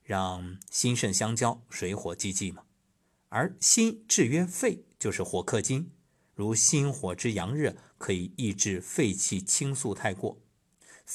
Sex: male